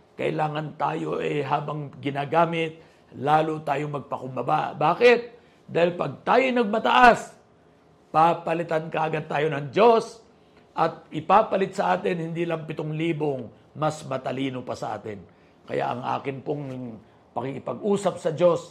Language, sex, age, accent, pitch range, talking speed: Filipino, male, 50-69, native, 140-180 Hz, 125 wpm